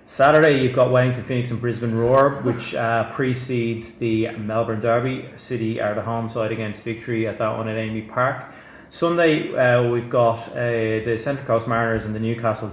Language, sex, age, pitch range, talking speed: English, male, 30-49, 110-125 Hz, 185 wpm